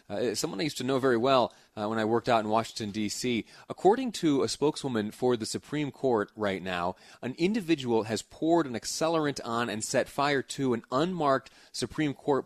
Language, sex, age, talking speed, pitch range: English, male, 30-49, 195 wpm, 100-125 Hz